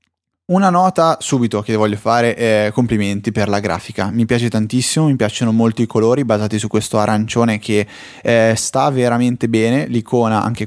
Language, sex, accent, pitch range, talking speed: Italian, male, native, 105-130 Hz, 170 wpm